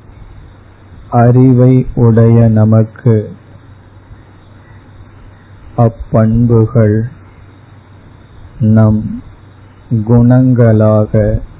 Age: 50-69